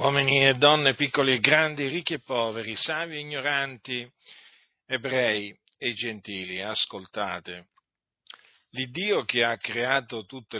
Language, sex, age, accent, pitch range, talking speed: Italian, male, 50-69, native, 115-150 Hz, 120 wpm